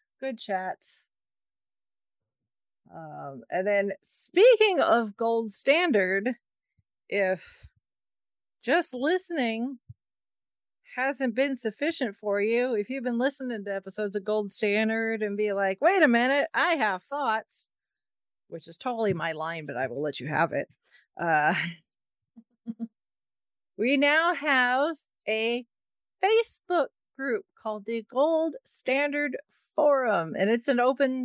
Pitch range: 190-280 Hz